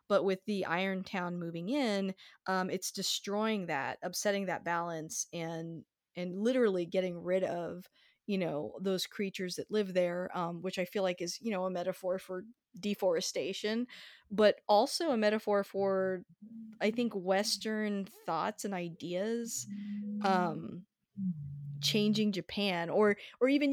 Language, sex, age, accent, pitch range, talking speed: English, female, 20-39, American, 180-210 Hz, 140 wpm